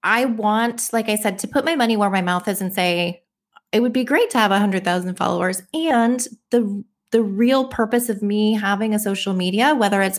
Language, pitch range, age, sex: English, 180-225 Hz, 20-39, female